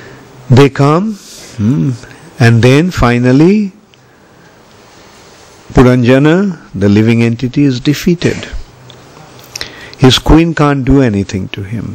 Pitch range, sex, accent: 110-140 Hz, male, Indian